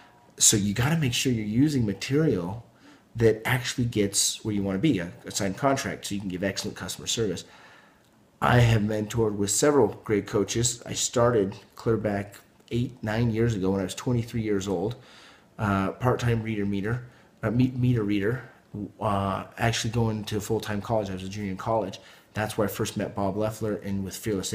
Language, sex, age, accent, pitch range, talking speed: English, male, 30-49, American, 100-115 Hz, 190 wpm